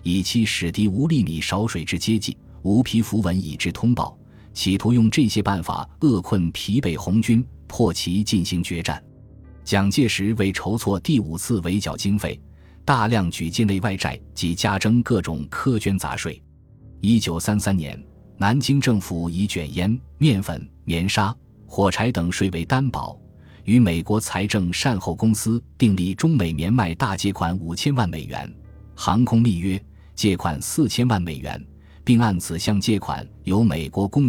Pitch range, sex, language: 85-115 Hz, male, Chinese